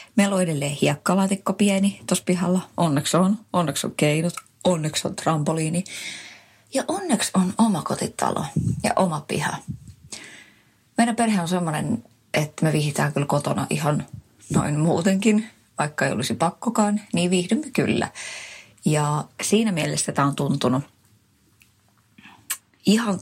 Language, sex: Finnish, female